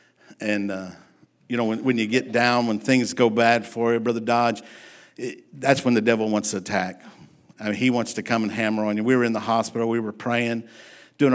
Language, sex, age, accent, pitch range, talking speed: English, male, 50-69, American, 110-120 Hz, 235 wpm